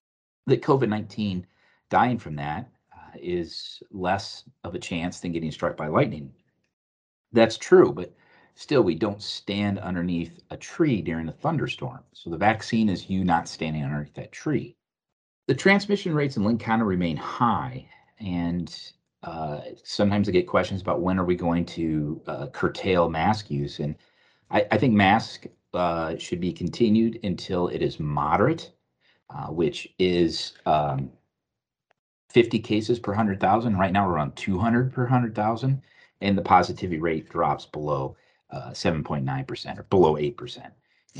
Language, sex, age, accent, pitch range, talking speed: English, male, 40-59, American, 80-110 Hz, 145 wpm